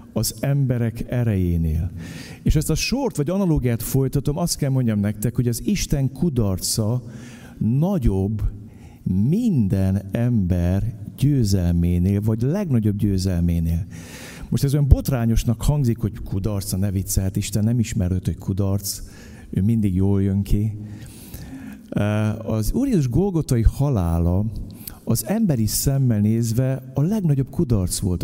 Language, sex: Hungarian, male